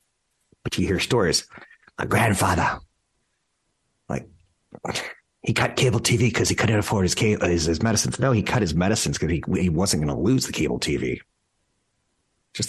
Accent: American